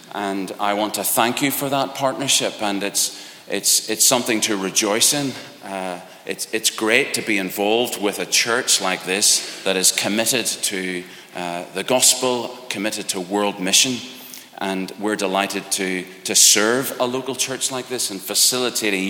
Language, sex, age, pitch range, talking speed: English, male, 40-59, 95-125 Hz, 165 wpm